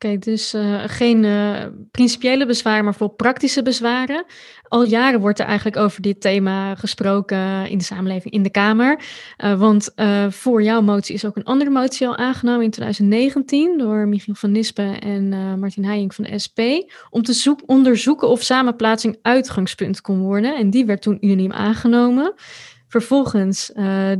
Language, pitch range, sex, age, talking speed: Dutch, 200-235 Hz, female, 20-39, 175 wpm